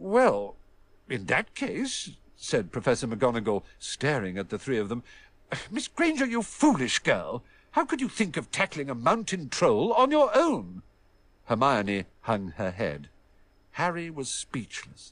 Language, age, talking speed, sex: Vietnamese, 50-69, 145 wpm, male